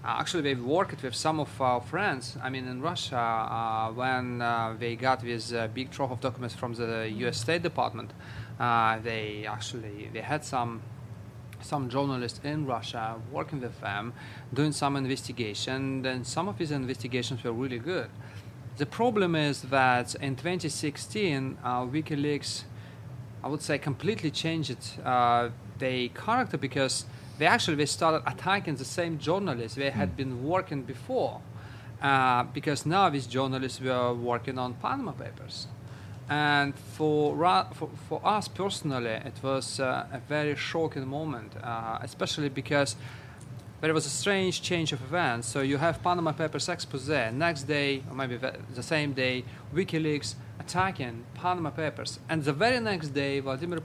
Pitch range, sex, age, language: 120-150 Hz, male, 30-49, English